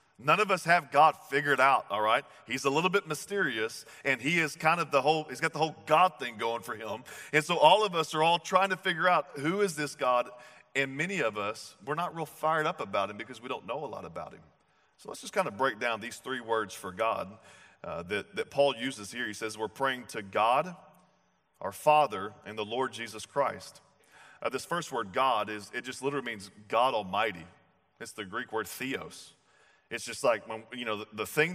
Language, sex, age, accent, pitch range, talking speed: English, male, 40-59, American, 130-165 Hz, 230 wpm